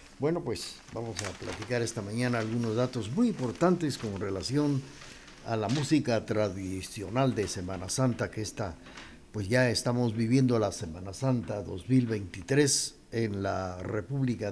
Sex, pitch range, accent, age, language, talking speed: male, 100-140 Hz, Mexican, 50-69, Spanish, 135 wpm